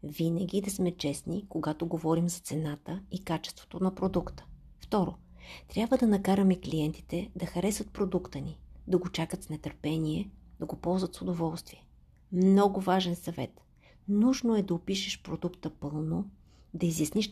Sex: female